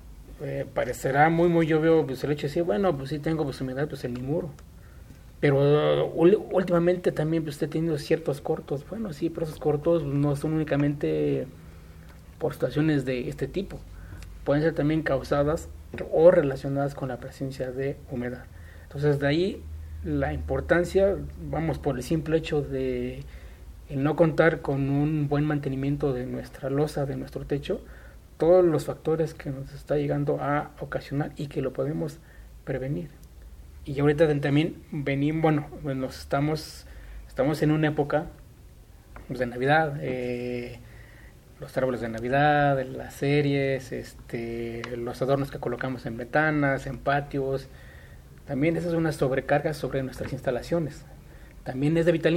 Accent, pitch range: Mexican, 125-155 Hz